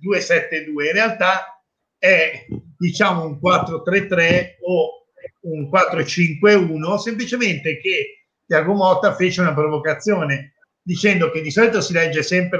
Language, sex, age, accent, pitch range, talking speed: Italian, male, 50-69, native, 155-195 Hz, 105 wpm